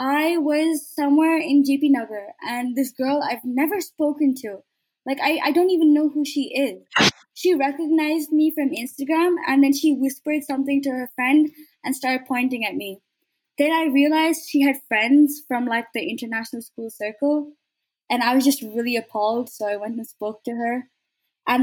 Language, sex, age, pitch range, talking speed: English, female, 20-39, 245-305 Hz, 185 wpm